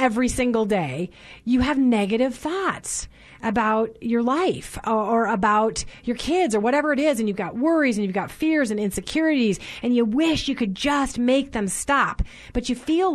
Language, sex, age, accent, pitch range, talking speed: English, female, 30-49, American, 200-255 Hz, 185 wpm